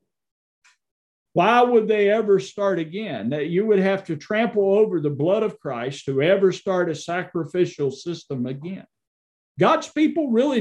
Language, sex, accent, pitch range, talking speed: English, male, American, 160-205 Hz, 155 wpm